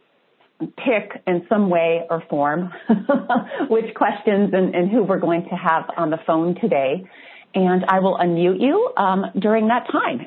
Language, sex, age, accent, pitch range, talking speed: English, female, 30-49, American, 165-225 Hz, 165 wpm